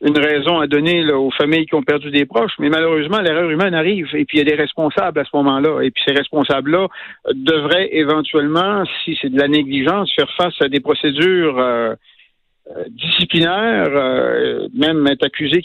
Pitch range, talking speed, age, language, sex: 145-185 Hz, 190 wpm, 60-79, French, male